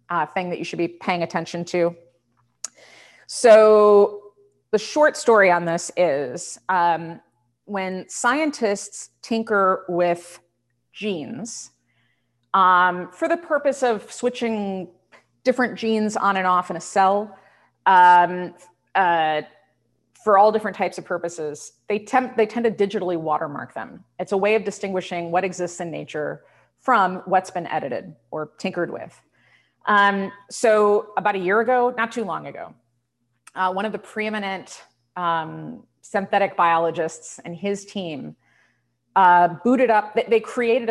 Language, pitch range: English, 170-215 Hz